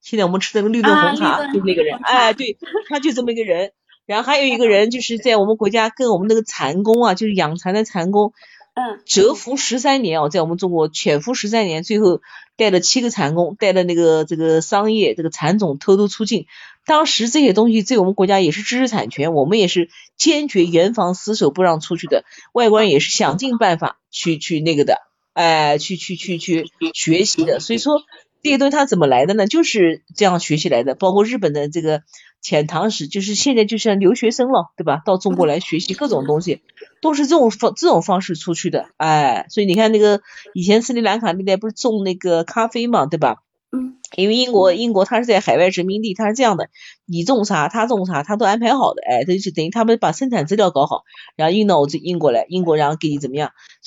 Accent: native